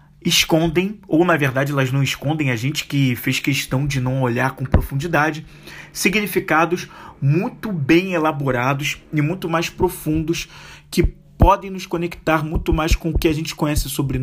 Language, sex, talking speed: Portuguese, male, 160 wpm